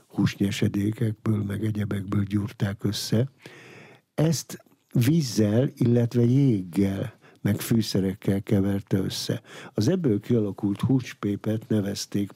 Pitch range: 100-130 Hz